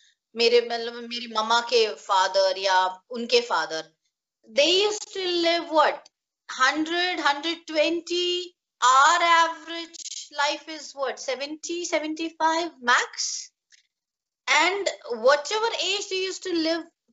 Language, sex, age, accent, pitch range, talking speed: English, female, 30-49, Indian, 235-330 Hz, 95 wpm